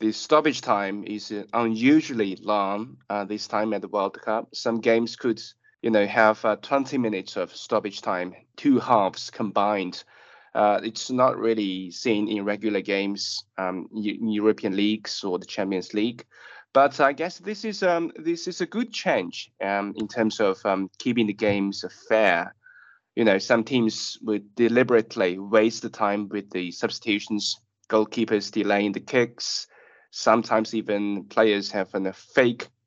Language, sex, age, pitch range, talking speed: English, male, 20-39, 100-120 Hz, 155 wpm